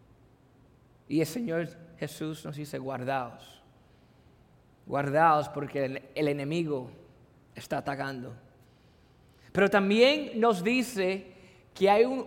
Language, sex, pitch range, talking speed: English, male, 155-225 Hz, 95 wpm